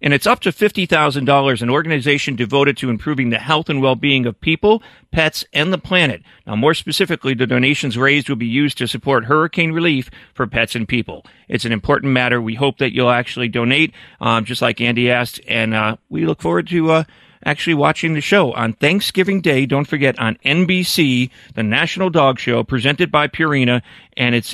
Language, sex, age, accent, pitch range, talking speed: English, male, 40-59, American, 120-150 Hz, 195 wpm